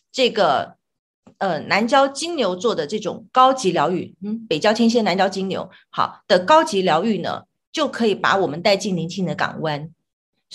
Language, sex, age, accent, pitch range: Chinese, female, 30-49, native, 195-285 Hz